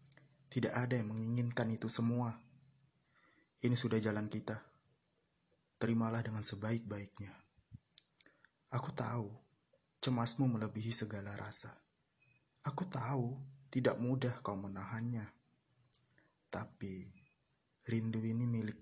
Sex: male